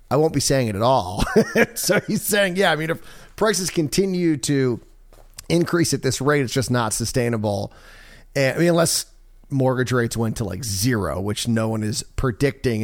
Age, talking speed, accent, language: 30-49, 185 wpm, American, English